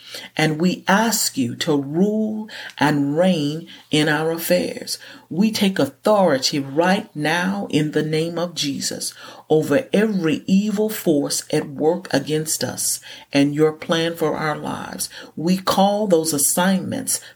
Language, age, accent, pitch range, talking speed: English, 50-69, American, 145-185 Hz, 135 wpm